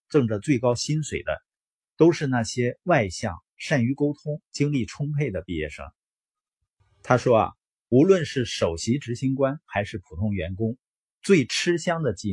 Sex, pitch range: male, 95-145 Hz